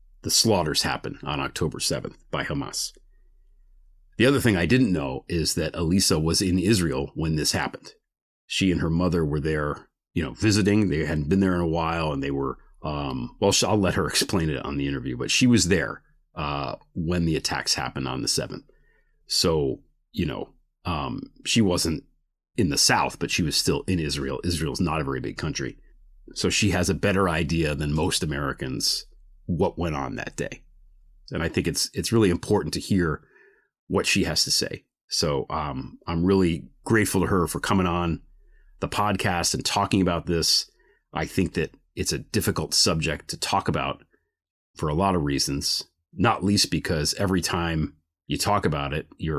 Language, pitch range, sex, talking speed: English, 75-95 Hz, male, 190 wpm